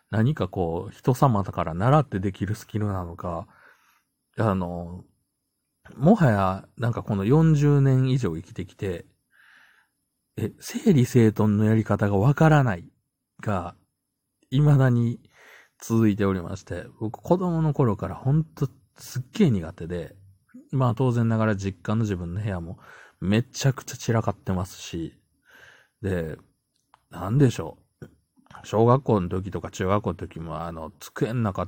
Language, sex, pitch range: Japanese, male, 95-130 Hz